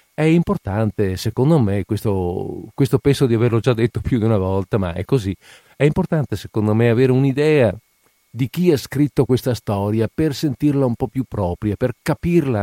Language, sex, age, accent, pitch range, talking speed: Italian, male, 50-69, native, 100-130 Hz, 180 wpm